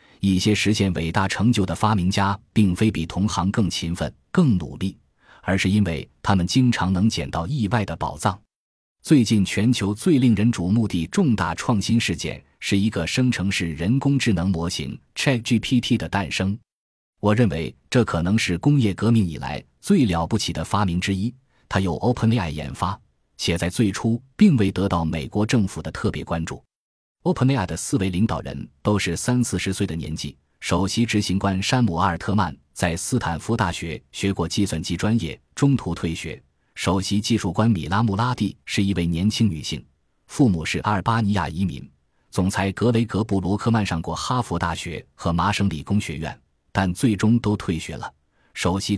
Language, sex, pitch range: Chinese, male, 85-110 Hz